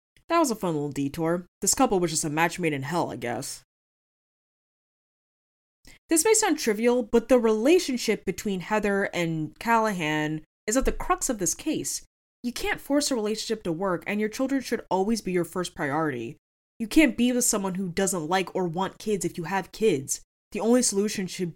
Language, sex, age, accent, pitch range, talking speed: English, female, 20-39, American, 165-235 Hz, 195 wpm